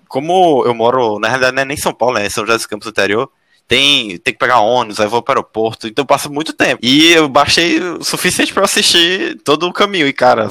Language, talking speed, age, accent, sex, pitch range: Portuguese, 250 wpm, 20-39, Brazilian, male, 110-150 Hz